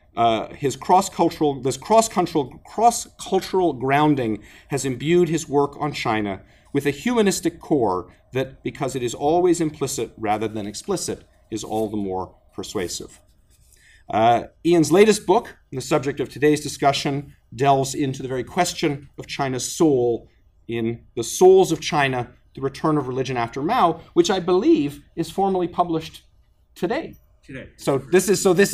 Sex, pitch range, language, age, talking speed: male, 130-180 Hz, English, 40-59, 150 wpm